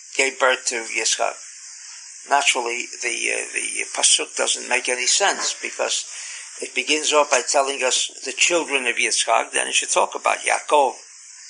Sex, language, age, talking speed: male, English, 50-69, 155 wpm